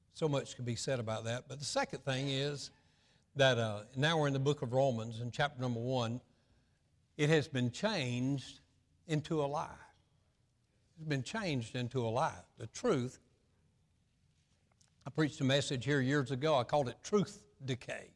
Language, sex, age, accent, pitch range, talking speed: English, male, 60-79, American, 120-155 Hz, 170 wpm